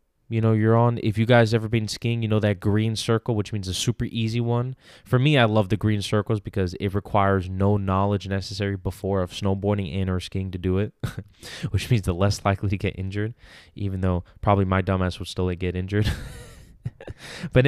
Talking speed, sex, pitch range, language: 215 wpm, male, 95-115 Hz, English